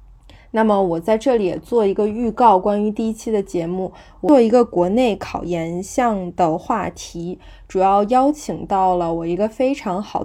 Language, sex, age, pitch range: Chinese, female, 20-39, 175-210 Hz